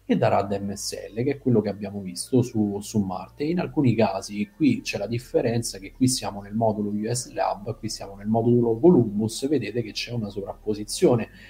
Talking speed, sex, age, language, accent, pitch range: 190 wpm, male, 40-59, Italian, native, 100-120 Hz